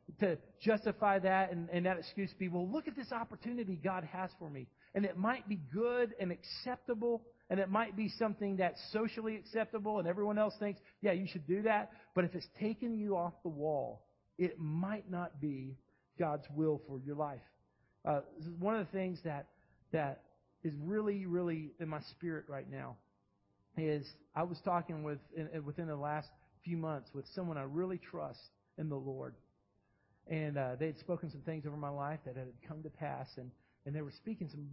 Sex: male